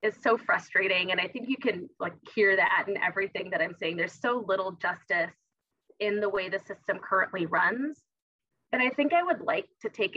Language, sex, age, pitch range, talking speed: English, female, 20-39, 195-245 Hz, 205 wpm